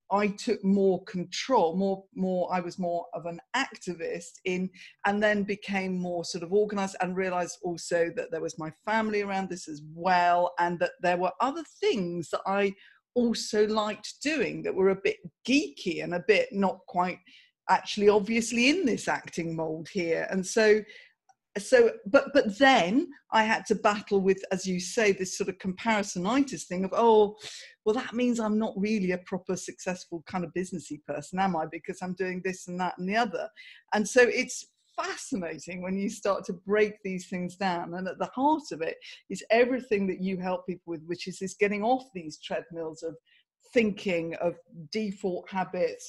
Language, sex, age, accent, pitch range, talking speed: English, female, 50-69, British, 180-220 Hz, 185 wpm